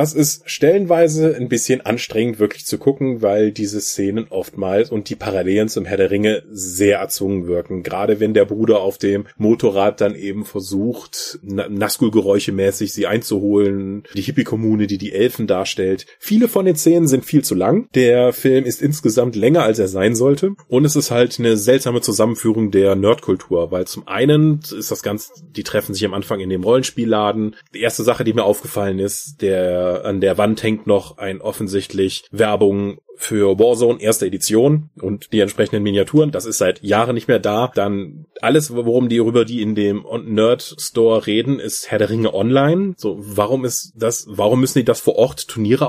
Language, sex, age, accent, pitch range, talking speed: German, male, 30-49, German, 105-145 Hz, 180 wpm